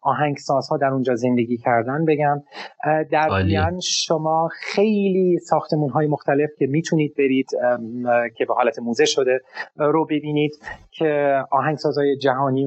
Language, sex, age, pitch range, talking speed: Persian, male, 30-49, 120-155 Hz, 135 wpm